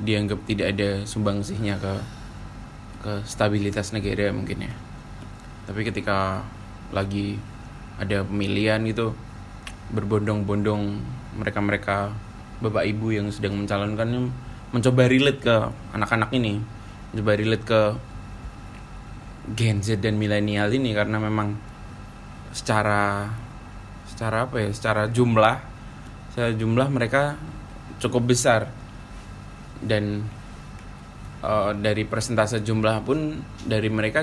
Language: Indonesian